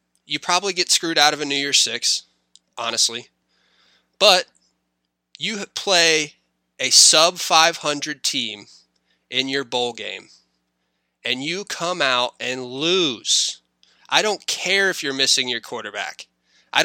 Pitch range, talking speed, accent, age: 125-175 Hz, 130 wpm, American, 20-39